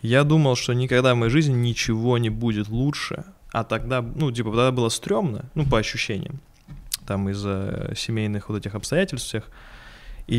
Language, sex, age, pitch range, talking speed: Russian, male, 20-39, 110-130 Hz, 170 wpm